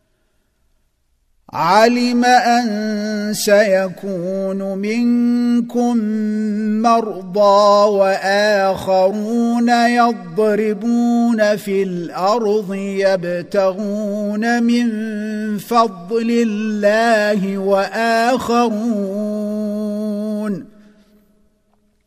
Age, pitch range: 50-69, 195-235 Hz